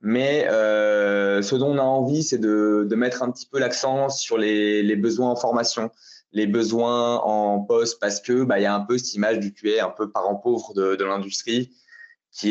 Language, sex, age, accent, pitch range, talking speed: French, male, 20-39, French, 105-135 Hz, 215 wpm